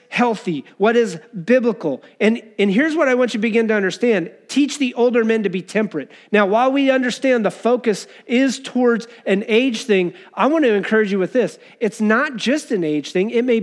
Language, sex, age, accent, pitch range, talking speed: English, male, 40-59, American, 175-250 Hz, 210 wpm